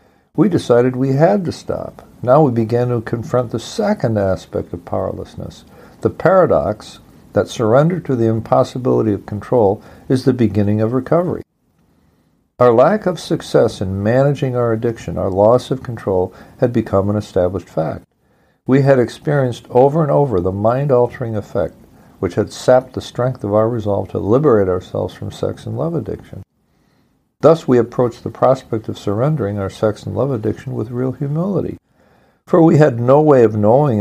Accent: American